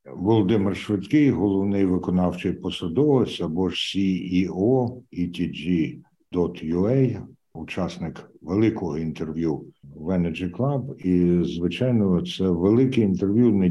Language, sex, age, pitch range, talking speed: Ukrainian, male, 60-79, 90-115 Hz, 85 wpm